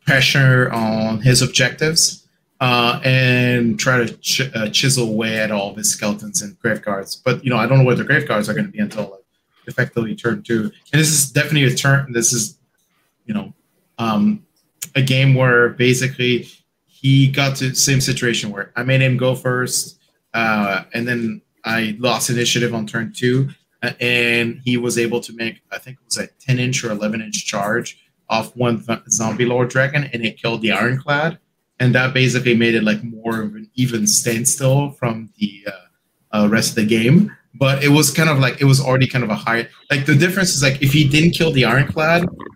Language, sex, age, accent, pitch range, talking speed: English, male, 30-49, American, 115-140 Hz, 205 wpm